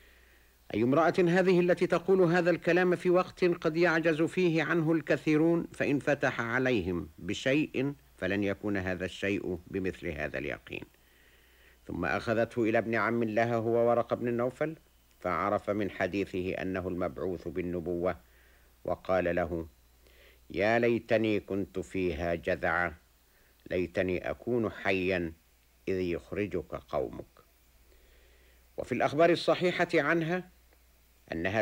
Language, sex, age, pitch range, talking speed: Arabic, male, 60-79, 80-130 Hz, 110 wpm